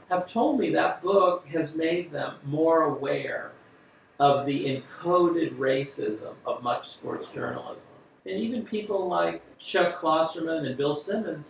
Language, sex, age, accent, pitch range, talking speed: English, male, 40-59, American, 130-175 Hz, 140 wpm